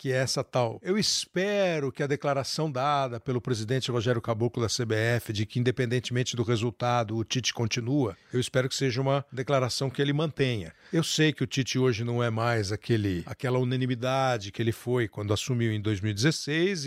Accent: Brazilian